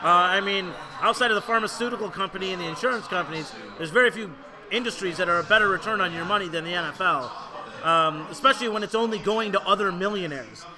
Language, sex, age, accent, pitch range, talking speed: English, male, 30-49, American, 180-225 Hz, 200 wpm